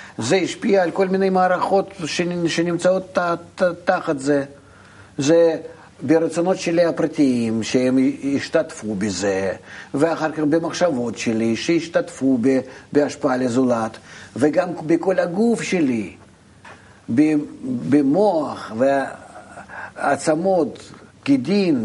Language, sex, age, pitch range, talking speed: Hebrew, male, 60-79, 120-180 Hz, 85 wpm